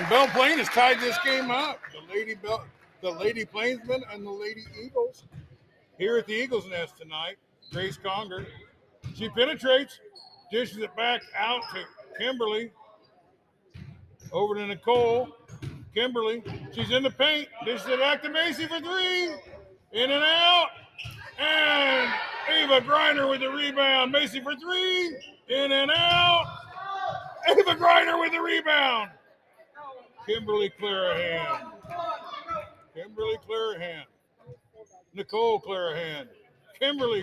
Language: English